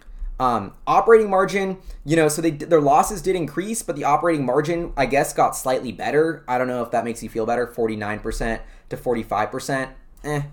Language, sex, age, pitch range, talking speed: English, male, 20-39, 115-150 Hz, 190 wpm